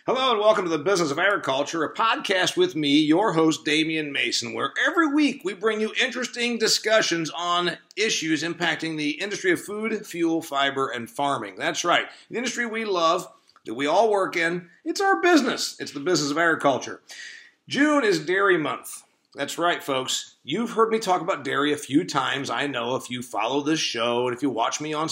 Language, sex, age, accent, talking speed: English, male, 50-69, American, 200 wpm